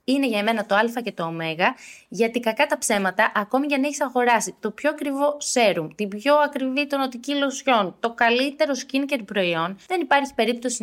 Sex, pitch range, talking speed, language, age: female, 200-255 Hz, 190 wpm, Greek, 20-39